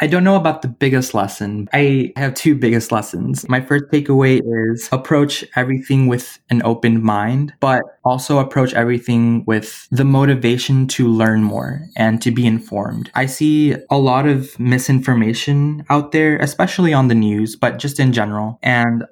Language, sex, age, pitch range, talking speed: English, male, 20-39, 110-135 Hz, 165 wpm